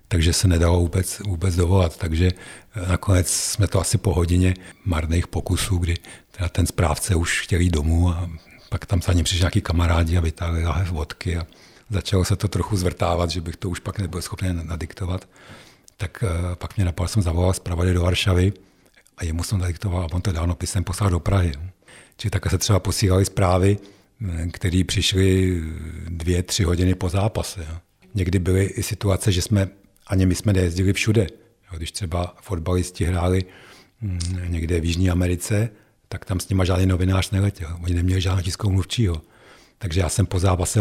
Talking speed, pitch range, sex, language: 175 wpm, 90-100 Hz, male, Czech